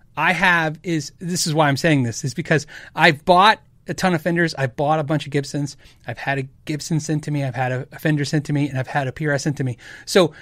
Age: 30-49